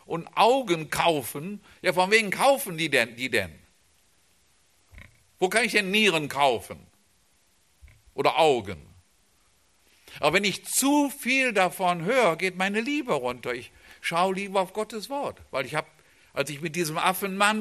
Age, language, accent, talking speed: 50-69, German, German, 150 wpm